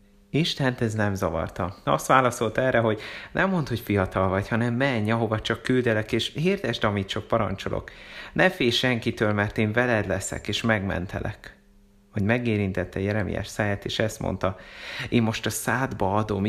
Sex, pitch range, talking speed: male, 100-120 Hz, 160 wpm